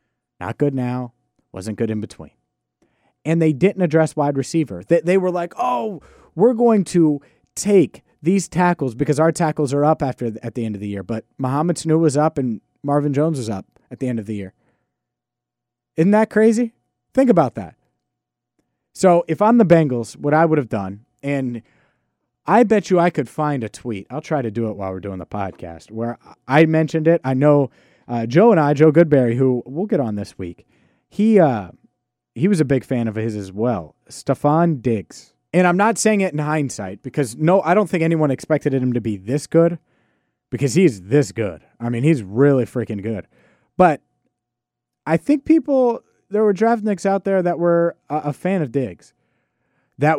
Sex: male